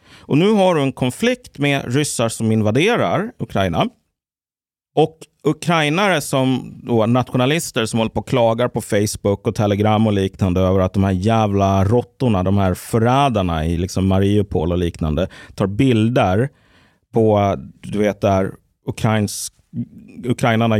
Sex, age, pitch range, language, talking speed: male, 30-49, 95-130 Hz, Swedish, 140 wpm